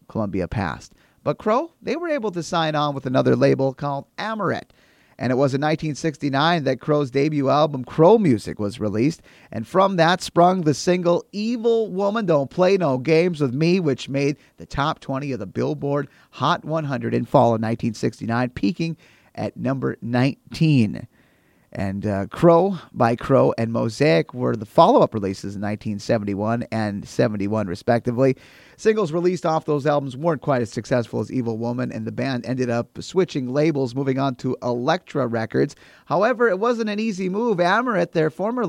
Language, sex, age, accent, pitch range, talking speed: English, male, 30-49, American, 120-165 Hz, 170 wpm